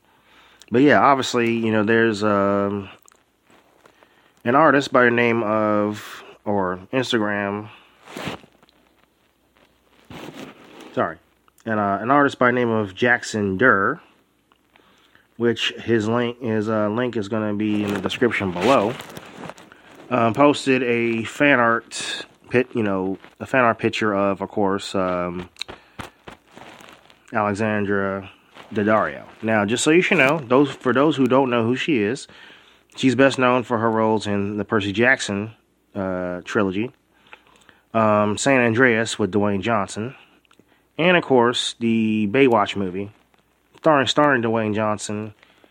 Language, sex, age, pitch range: English, male, 30-49, 100-120 Hz